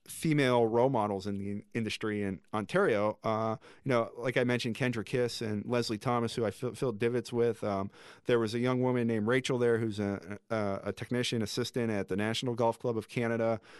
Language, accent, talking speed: English, American, 195 wpm